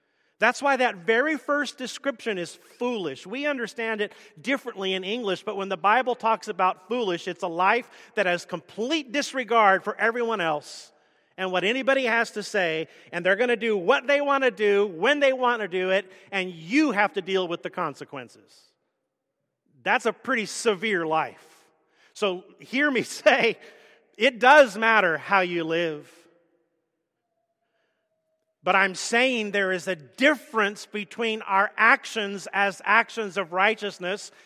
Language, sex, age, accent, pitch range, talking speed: English, male, 40-59, American, 185-255 Hz, 155 wpm